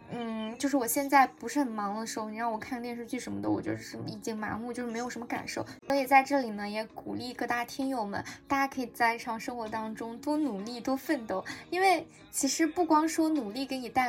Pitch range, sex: 225-275 Hz, female